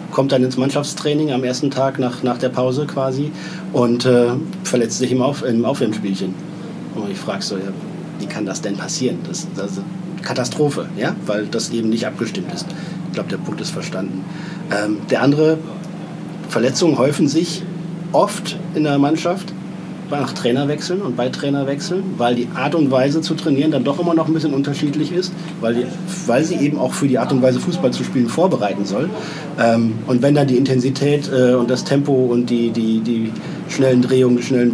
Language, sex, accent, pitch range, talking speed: German, male, German, 125-170 Hz, 190 wpm